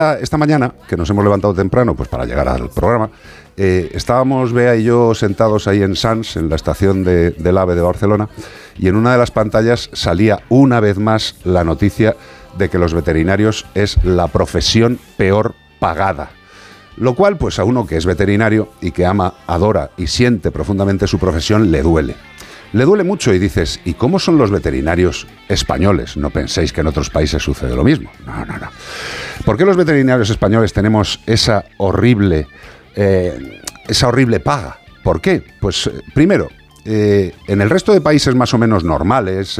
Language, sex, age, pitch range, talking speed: Spanish, male, 50-69, 85-115 Hz, 175 wpm